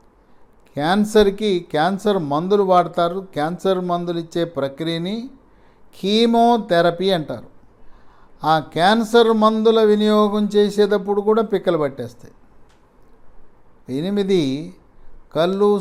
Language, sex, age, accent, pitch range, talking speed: English, male, 60-79, Indian, 170-210 Hz, 100 wpm